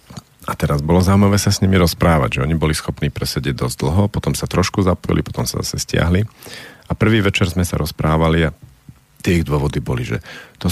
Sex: male